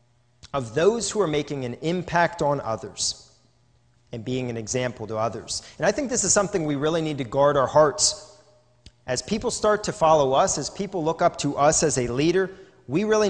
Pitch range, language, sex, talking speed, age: 125-180 Hz, English, male, 205 wpm, 40-59